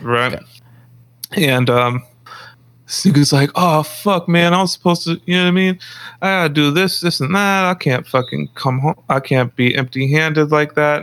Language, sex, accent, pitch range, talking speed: English, male, American, 120-175 Hz, 195 wpm